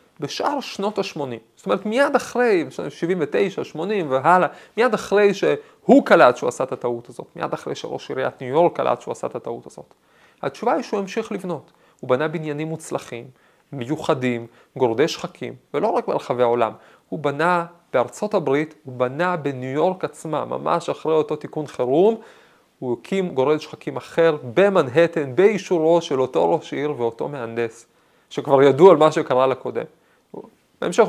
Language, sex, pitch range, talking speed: Hebrew, male, 130-185 Hz, 145 wpm